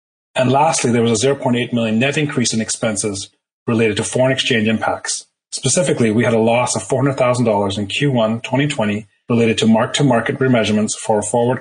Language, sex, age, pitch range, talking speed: English, male, 30-49, 110-135 Hz, 170 wpm